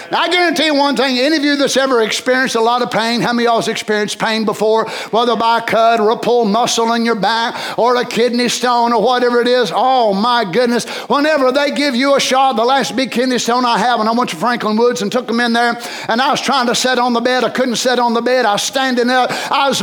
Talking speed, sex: 270 wpm, male